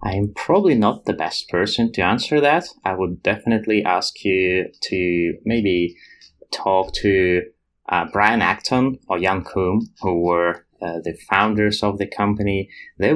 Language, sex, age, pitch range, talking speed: English, male, 20-39, 95-120 Hz, 150 wpm